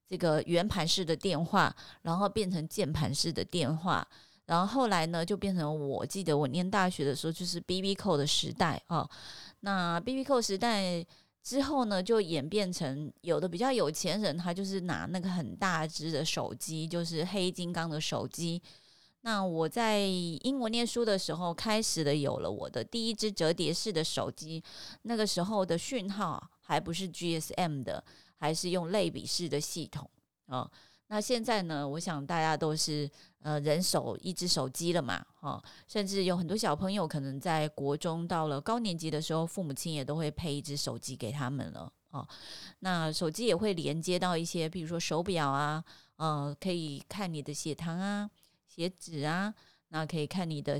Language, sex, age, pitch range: Chinese, female, 30-49, 155-195 Hz